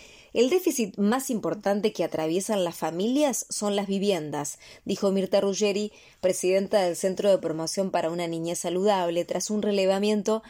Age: 20-39